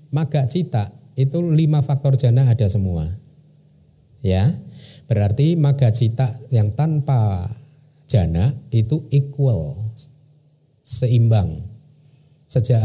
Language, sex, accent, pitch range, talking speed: Indonesian, male, native, 115-145 Hz, 85 wpm